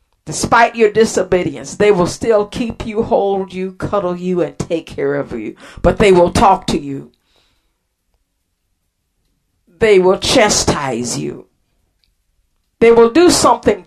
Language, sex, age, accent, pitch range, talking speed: English, female, 50-69, American, 130-210 Hz, 135 wpm